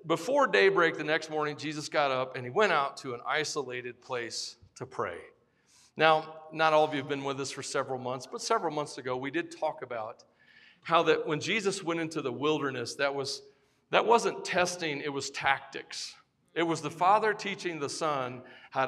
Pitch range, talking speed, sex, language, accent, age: 140-175 Hz, 195 wpm, male, English, American, 40-59